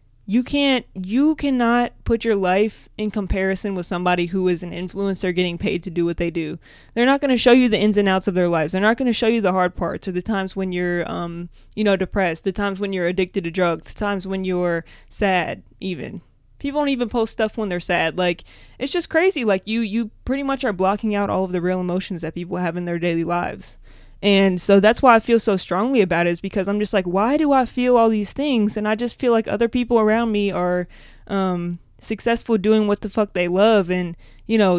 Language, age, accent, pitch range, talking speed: English, 20-39, American, 180-220 Hz, 245 wpm